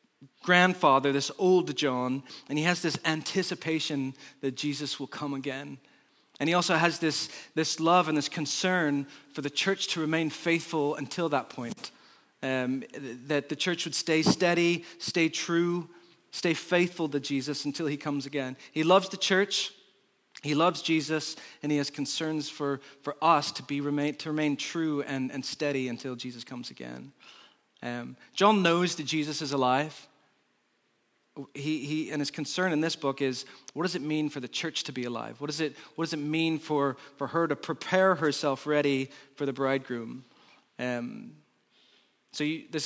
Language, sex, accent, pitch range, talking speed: English, male, American, 135-160 Hz, 175 wpm